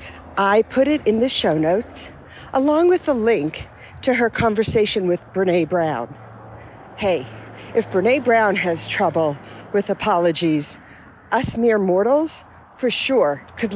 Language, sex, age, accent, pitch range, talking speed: English, female, 50-69, American, 155-235 Hz, 135 wpm